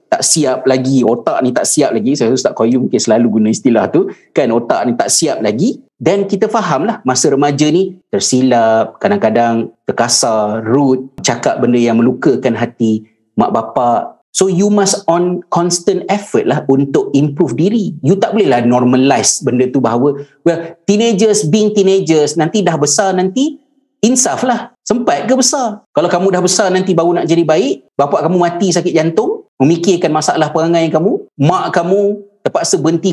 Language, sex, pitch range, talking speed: Malay, male, 135-190 Hz, 170 wpm